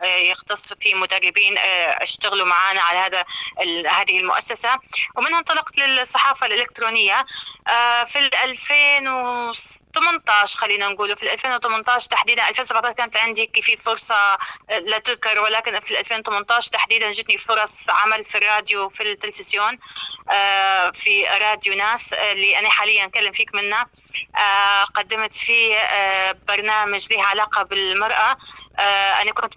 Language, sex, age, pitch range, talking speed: Arabic, female, 20-39, 200-235 Hz, 130 wpm